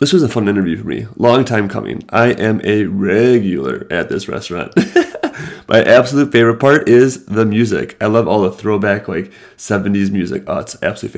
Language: English